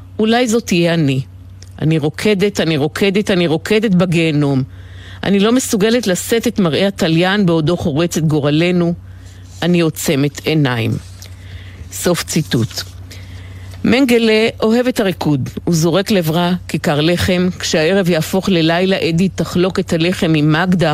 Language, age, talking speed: Hebrew, 50-69, 130 wpm